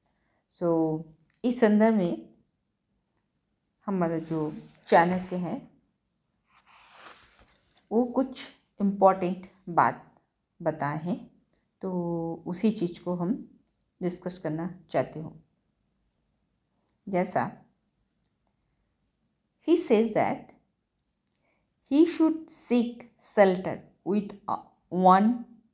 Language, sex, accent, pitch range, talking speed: Hindi, female, native, 175-235 Hz, 80 wpm